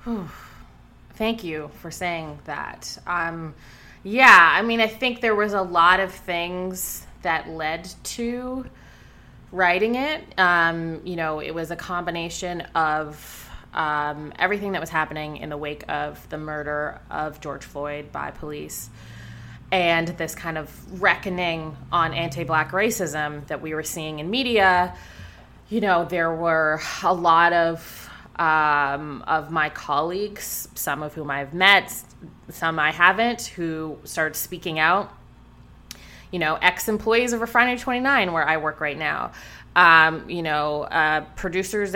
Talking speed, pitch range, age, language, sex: 140 wpm, 155-190 Hz, 20-39, English, female